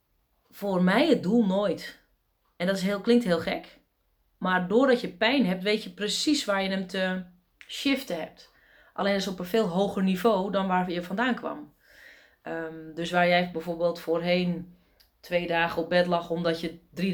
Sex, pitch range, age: female, 170-210 Hz, 30-49